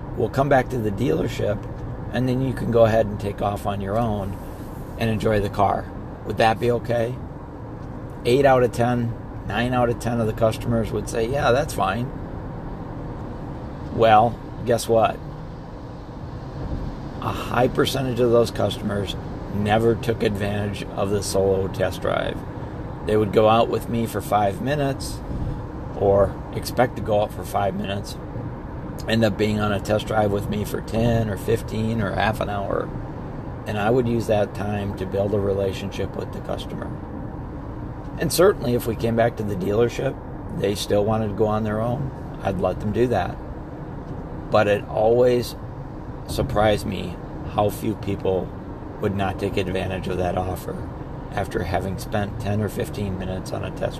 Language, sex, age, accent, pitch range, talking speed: English, male, 50-69, American, 100-120 Hz, 170 wpm